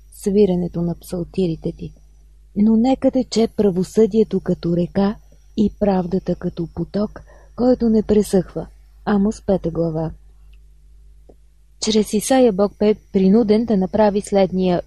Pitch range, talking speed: 175-215 Hz, 115 wpm